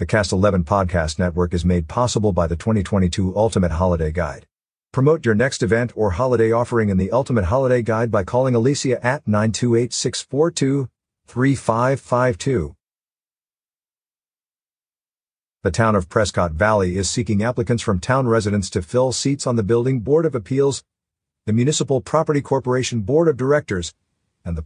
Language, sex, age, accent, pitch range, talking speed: English, male, 50-69, American, 90-125 Hz, 145 wpm